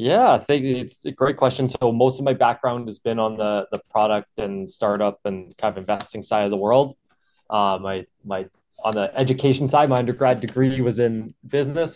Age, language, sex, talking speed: 20-39, English, male, 205 wpm